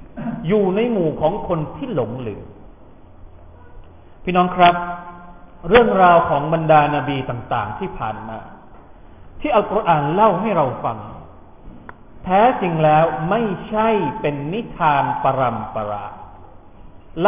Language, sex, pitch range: Thai, male, 130-195 Hz